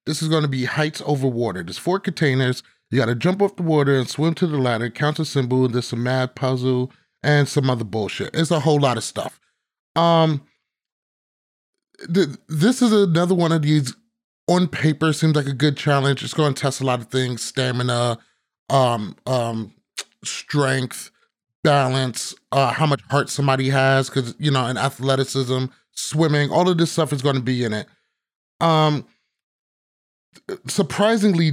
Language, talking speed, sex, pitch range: English, 175 wpm, male, 125-160 Hz